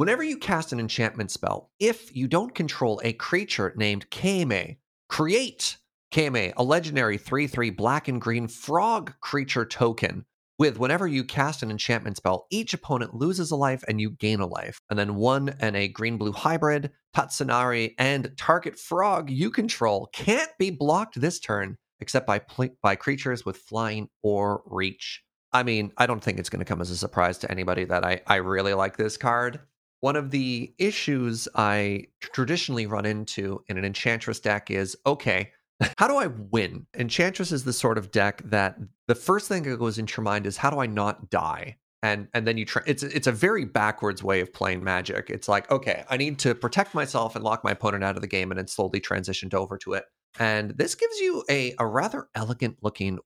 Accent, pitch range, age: American, 100-140 Hz, 30-49